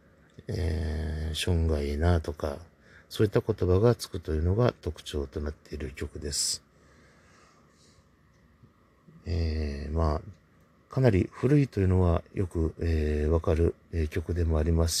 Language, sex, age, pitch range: Japanese, male, 50-69, 75-95 Hz